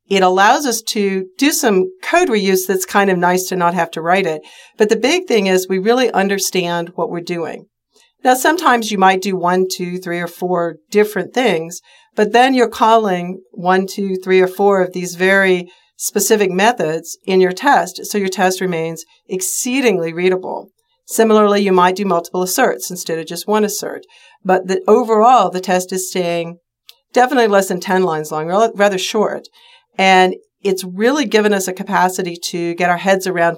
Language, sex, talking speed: English, female, 180 wpm